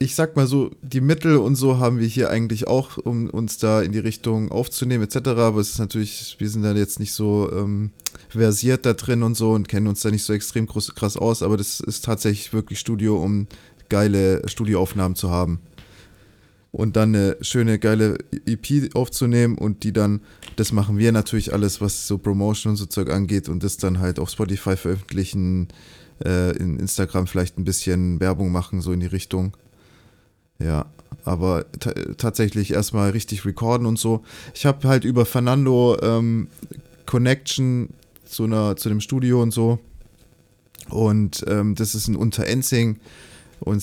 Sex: male